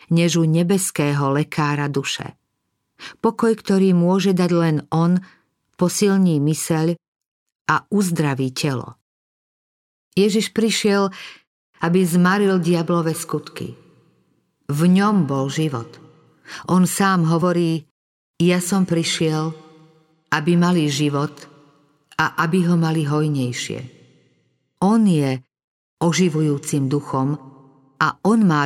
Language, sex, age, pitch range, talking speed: Slovak, female, 50-69, 145-180 Hz, 95 wpm